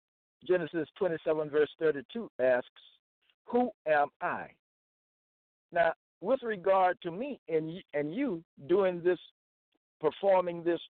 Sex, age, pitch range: male, 60-79, 125-185 Hz